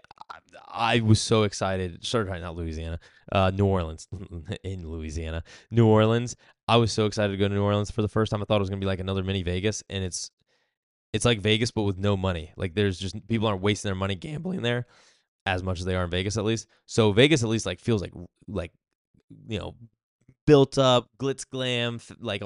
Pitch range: 95-115 Hz